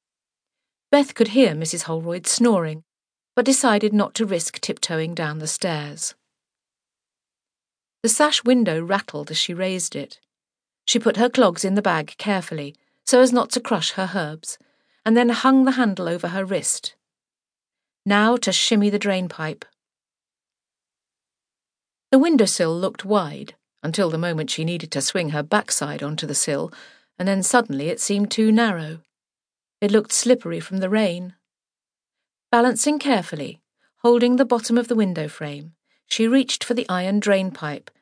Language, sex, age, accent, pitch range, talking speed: English, female, 50-69, British, 170-235 Hz, 150 wpm